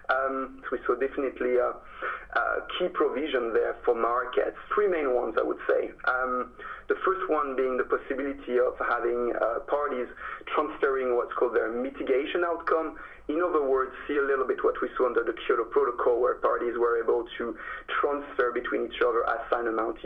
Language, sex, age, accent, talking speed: English, male, 30-49, French, 180 wpm